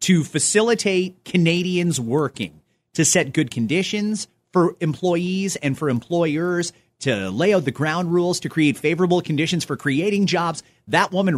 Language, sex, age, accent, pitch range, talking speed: English, male, 30-49, American, 135-195 Hz, 150 wpm